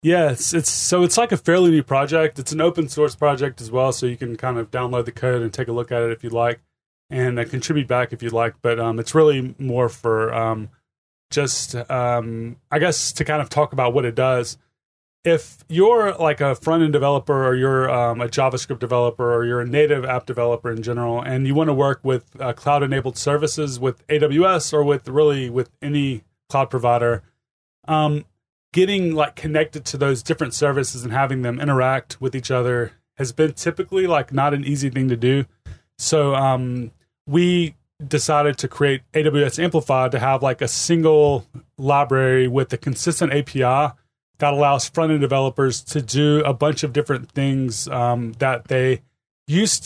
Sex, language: male, English